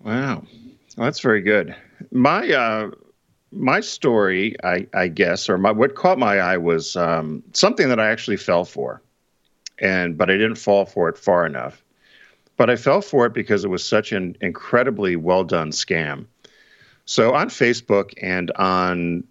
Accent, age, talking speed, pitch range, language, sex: American, 50-69, 165 wpm, 85-105 Hz, English, male